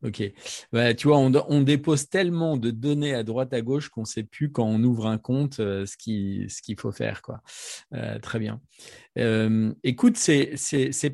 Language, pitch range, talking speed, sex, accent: French, 110-145 Hz, 210 wpm, male, French